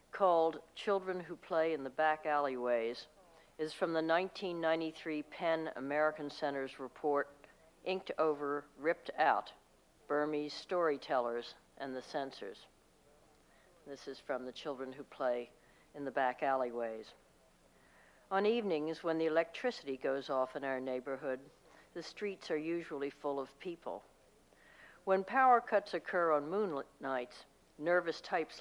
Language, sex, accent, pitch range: English, female, American, 135-165 Hz